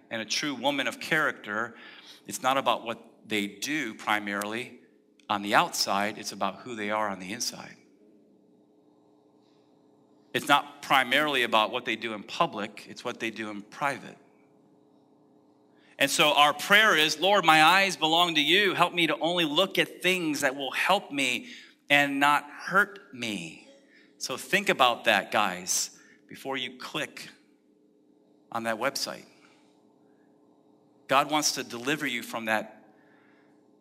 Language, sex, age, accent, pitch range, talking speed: English, male, 40-59, American, 110-160 Hz, 145 wpm